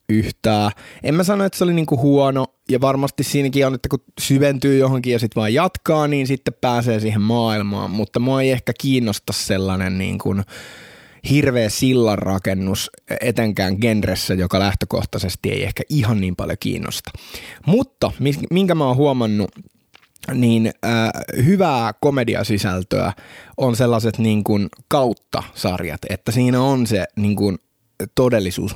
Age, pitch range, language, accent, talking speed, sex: 20-39, 105-140 Hz, Finnish, native, 135 wpm, male